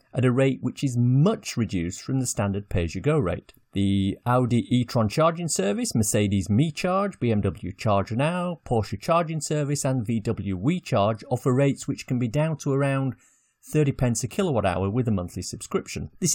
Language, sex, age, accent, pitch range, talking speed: English, male, 40-59, British, 100-145 Hz, 175 wpm